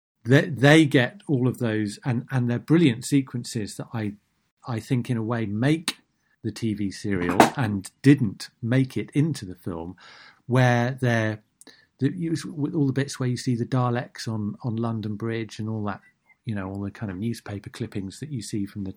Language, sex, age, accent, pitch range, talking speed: English, male, 40-59, British, 100-130 Hz, 195 wpm